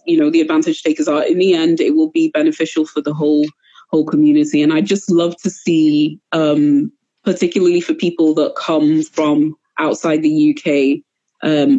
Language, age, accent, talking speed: English, 20-39, British, 180 wpm